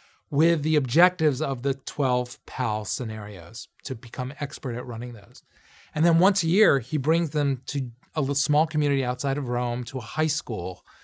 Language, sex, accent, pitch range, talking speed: English, male, American, 125-155 Hz, 180 wpm